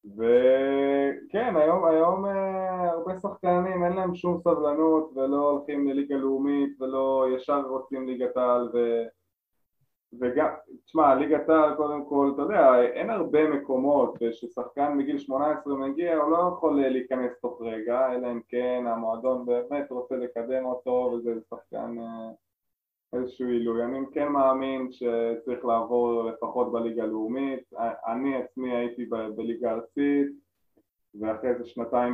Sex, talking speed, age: male, 135 wpm, 20-39